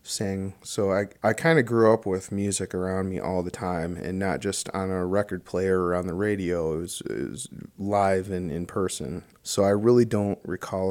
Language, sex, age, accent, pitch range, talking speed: English, male, 30-49, American, 90-100 Hz, 215 wpm